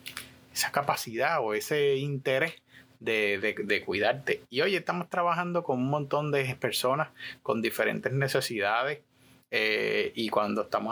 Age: 30-49